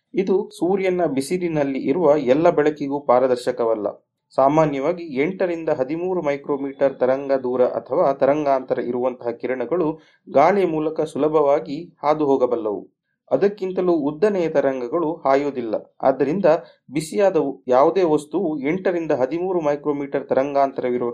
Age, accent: 30-49, native